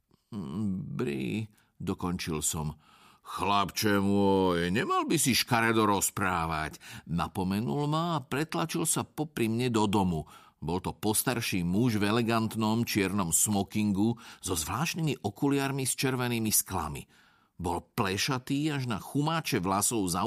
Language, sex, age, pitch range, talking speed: Slovak, male, 50-69, 95-140 Hz, 120 wpm